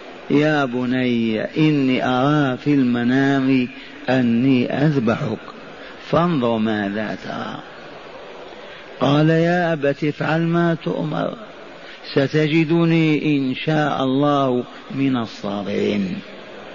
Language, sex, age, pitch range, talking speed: Arabic, male, 50-69, 130-155 Hz, 80 wpm